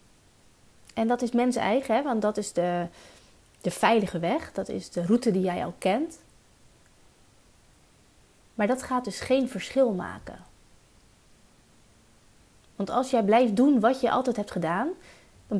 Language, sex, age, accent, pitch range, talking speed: Dutch, female, 30-49, Dutch, 200-255 Hz, 145 wpm